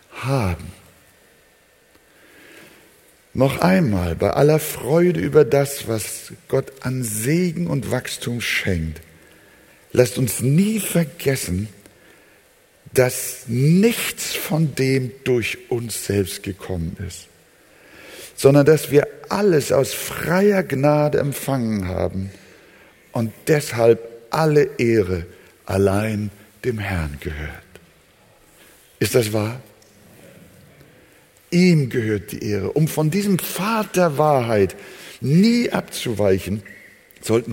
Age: 60-79